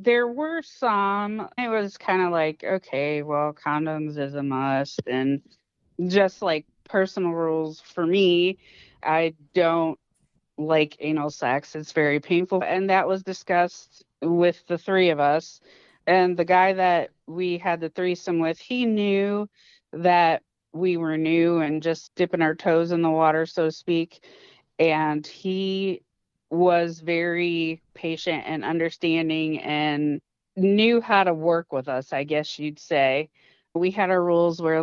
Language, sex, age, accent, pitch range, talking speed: English, female, 30-49, American, 155-185 Hz, 150 wpm